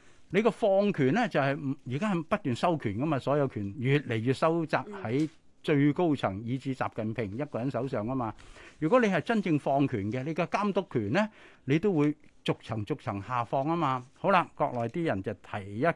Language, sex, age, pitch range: Chinese, male, 60-79, 130-180 Hz